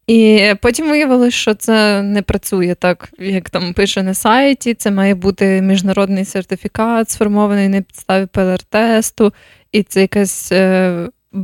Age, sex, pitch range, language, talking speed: 20-39, female, 190-225 Hz, Ukrainian, 130 wpm